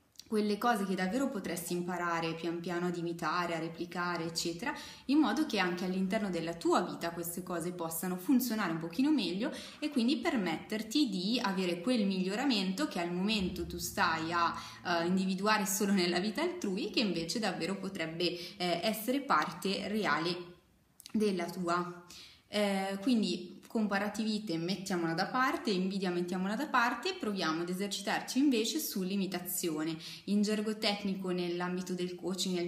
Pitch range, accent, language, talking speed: 175-215 Hz, native, Italian, 140 wpm